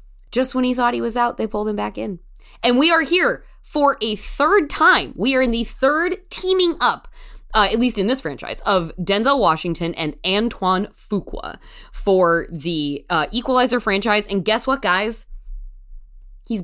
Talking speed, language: 175 wpm, English